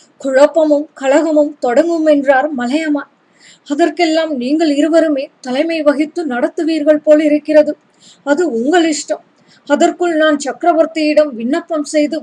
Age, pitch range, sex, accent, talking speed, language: 20-39, 285-320 Hz, female, native, 105 wpm, Tamil